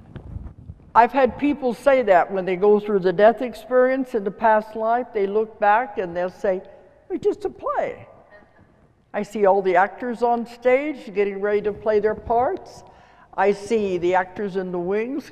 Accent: American